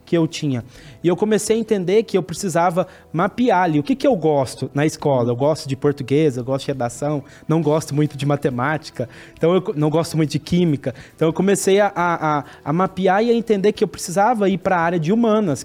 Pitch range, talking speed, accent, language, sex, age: 150-195 Hz, 225 wpm, Brazilian, Portuguese, male, 20-39